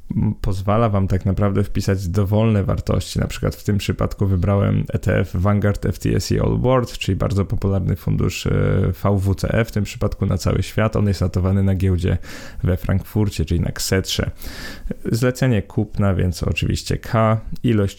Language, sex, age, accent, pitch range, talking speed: Polish, male, 20-39, native, 95-105 Hz, 150 wpm